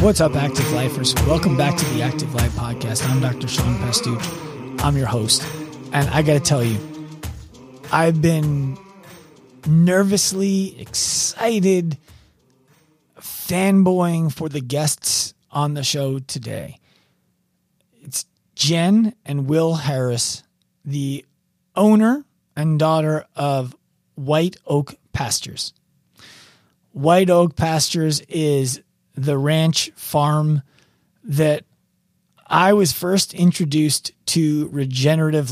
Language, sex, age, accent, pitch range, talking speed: English, male, 30-49, American, 135-165 Hz, 105 wpm